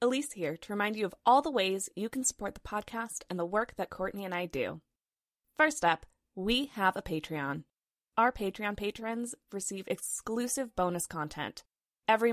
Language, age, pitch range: English, 20-39, 175-230 Hz